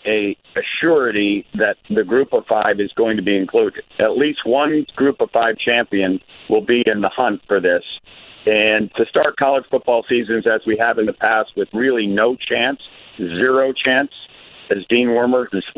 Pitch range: 115-155 Hz